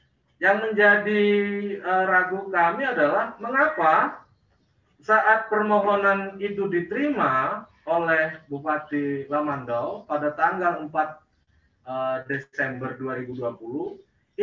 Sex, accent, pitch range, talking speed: male, native, 145-205 Hz, 85 wpm